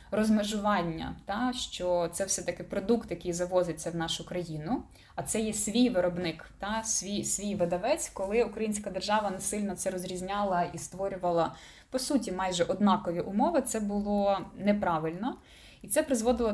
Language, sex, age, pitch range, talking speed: Ukrainian, female, 20-39, 180-225 Hz, 150 wpm